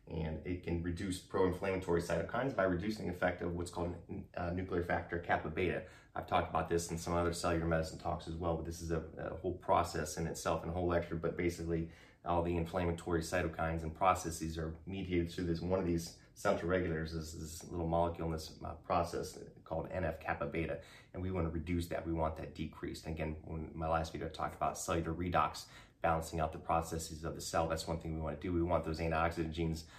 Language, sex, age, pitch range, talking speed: English, male, 30-49, 80-90 Hz, 225 wpm